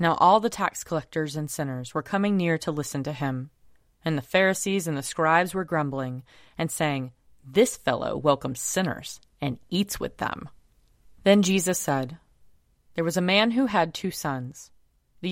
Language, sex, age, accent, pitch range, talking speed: English, female, 30-49, American, 140-185 Hz, 170 wpm